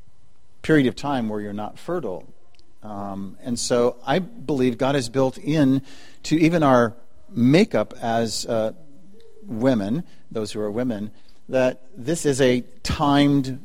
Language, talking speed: English, 140 wpm